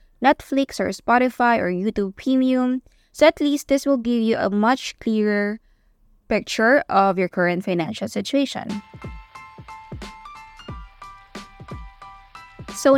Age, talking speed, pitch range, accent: 20-39, 105 wpm, 185-240 Hz, native